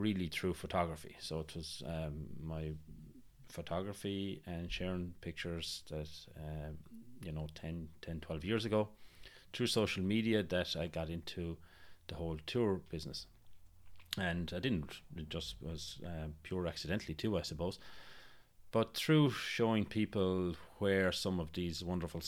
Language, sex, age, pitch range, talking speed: English, male, 30-49, 80-95 Hz, 135 wpm